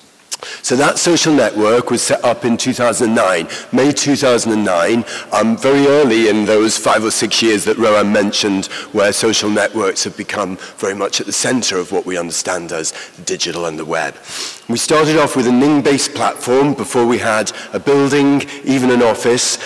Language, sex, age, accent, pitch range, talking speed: English, male, 40-59, British, 110-135 Hz, 175 wpm